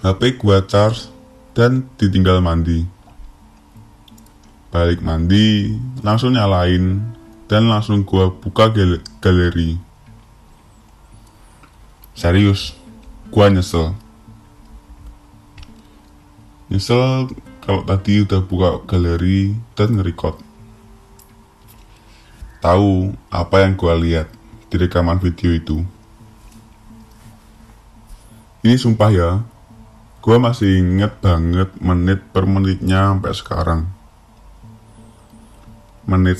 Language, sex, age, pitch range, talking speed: Indonesian, male, 20-39, 90-110 Hz, 80 wpm